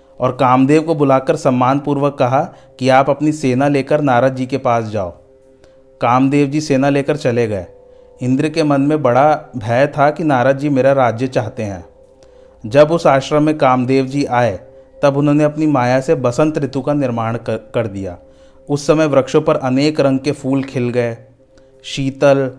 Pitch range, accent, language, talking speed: 130-150 Hz, native, Hindi, 175 wpm